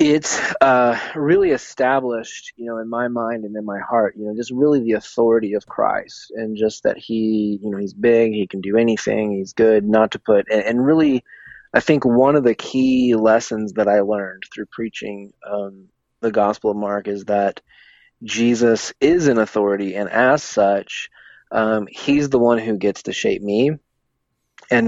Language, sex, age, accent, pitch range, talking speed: English, male, 20-39, American, 105-120 Hz, 185 wpm